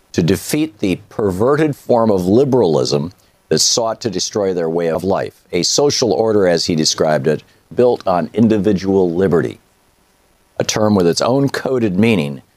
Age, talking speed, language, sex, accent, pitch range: 50-69, 160 wpm, English, male, American, 85-110 Hz